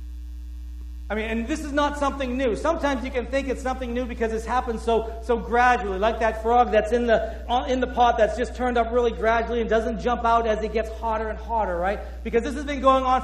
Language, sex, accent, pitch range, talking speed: English, male, American, 210-255 Hz, 240 wpm